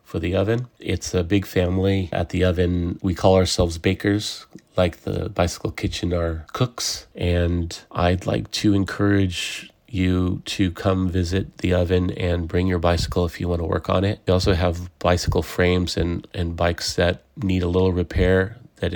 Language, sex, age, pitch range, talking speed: English, male, 30-49, 90-100 Hz, 175 wpm